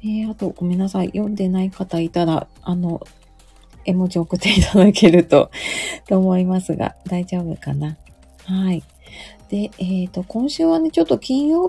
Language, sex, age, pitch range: Japanese, female, 30-49, 165-210 Hz